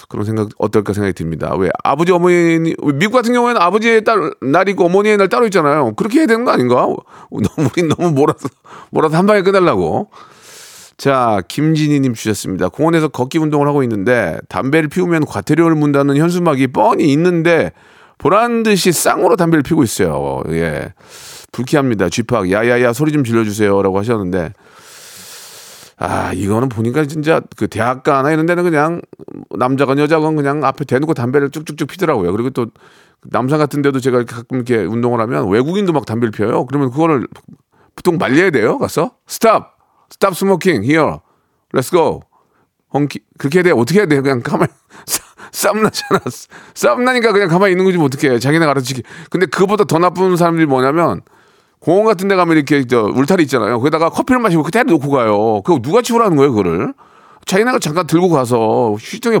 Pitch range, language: 125-185 Hz, Korean